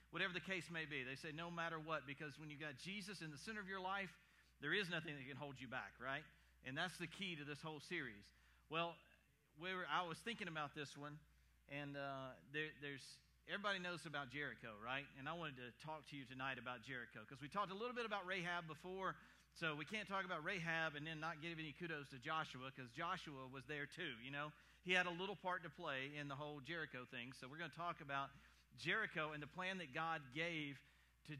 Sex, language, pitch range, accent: male, English, 140-185 Hz, American